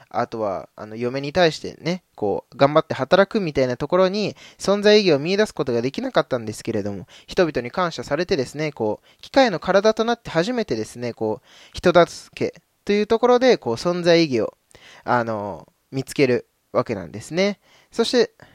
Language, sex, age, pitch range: Japanese, male, 20-39, 120-185 Hz